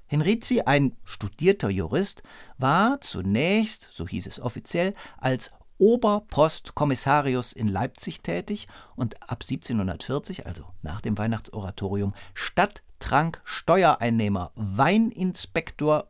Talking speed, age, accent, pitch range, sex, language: 95 wpm, 50-69, German, 105-170 Hz, male, German